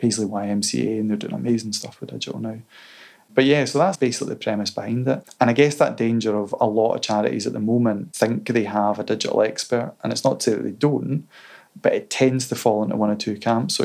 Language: English